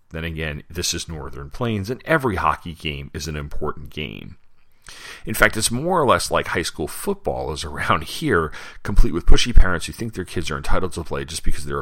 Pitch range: 75-95 Hz